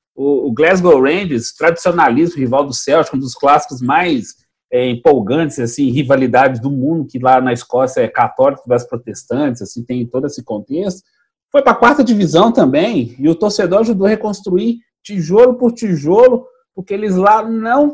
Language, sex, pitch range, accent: Portuguese, male, 140-235 Hz, Brazilian